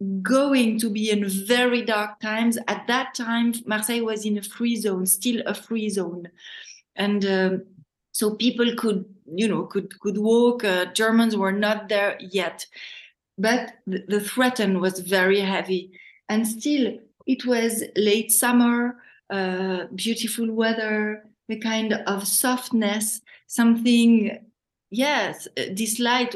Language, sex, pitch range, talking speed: English, female, 195-235 Hz, 135 wpm